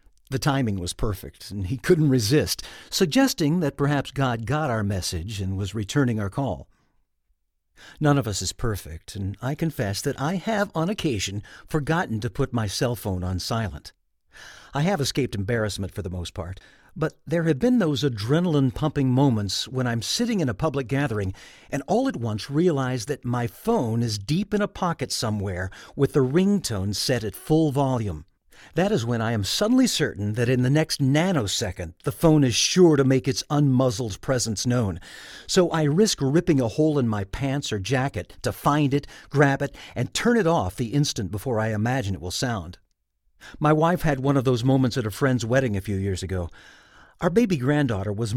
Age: 50-69